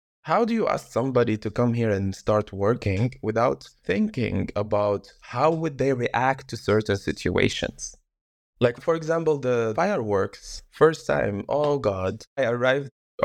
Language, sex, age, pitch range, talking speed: English, male, 20-39, 100-130 Hz, 150 wpm